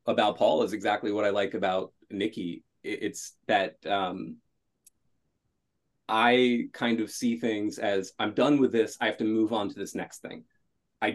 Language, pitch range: English, 110-130 Hz